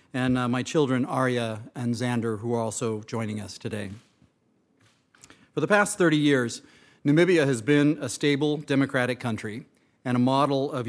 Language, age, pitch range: English, 40-59, 120-145 Hz